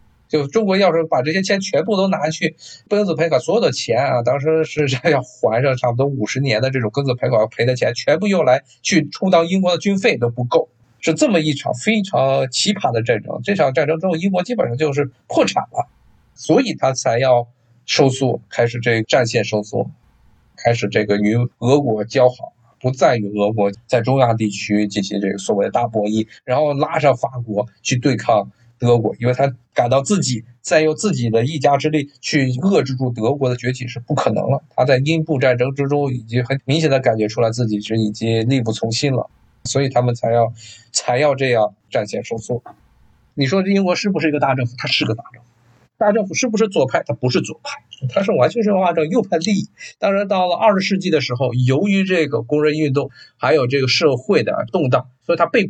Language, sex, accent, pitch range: Chinese, male, native, 120-160 Hz